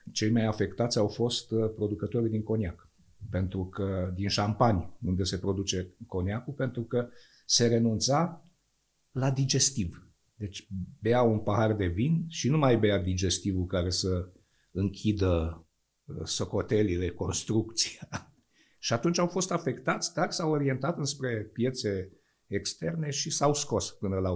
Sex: male